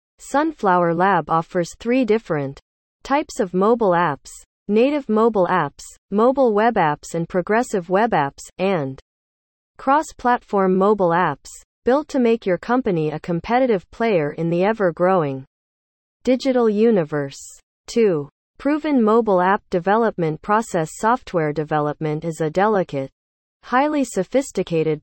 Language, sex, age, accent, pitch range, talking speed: English, female, 40-59, American, 160-230 Hz, 115 wpm